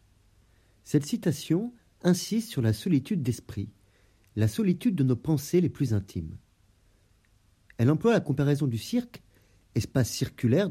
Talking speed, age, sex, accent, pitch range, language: 130 wpm, 40-59, male, French, 100-135 Hz, French